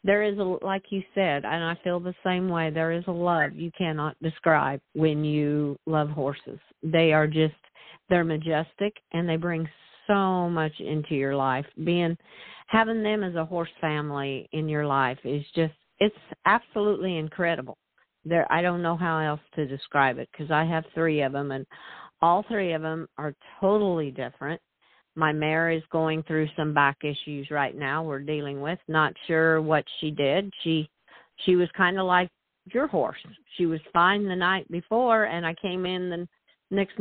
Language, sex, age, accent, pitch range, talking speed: English, female, 50-69, American, 155-185 Hz, 180 wpm